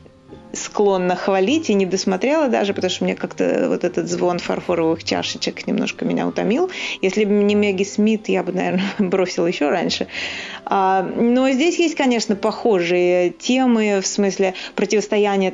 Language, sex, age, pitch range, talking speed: Russian, female, 30-49, 175-205 Hz, 145 wpm